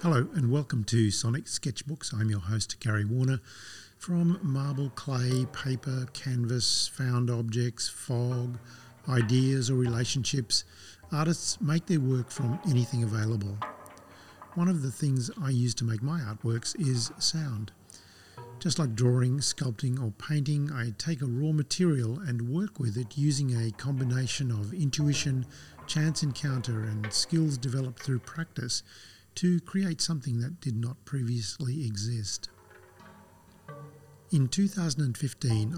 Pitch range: 115-150 Hz